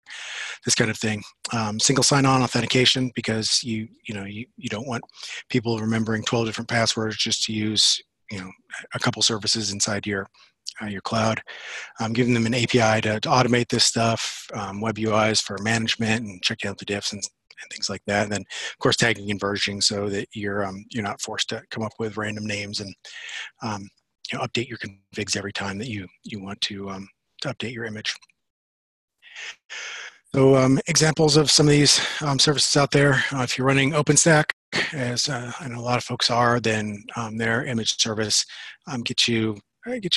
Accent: American